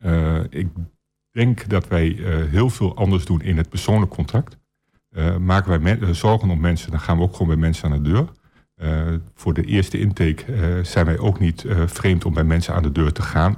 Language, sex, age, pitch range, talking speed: Dutch, male, 50-69, 85-100 Hz, 225 wpm